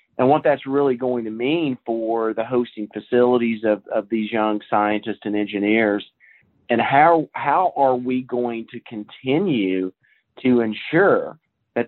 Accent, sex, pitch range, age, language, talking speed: American, male, 110-135 Hz, 40-59, English, 145 wpm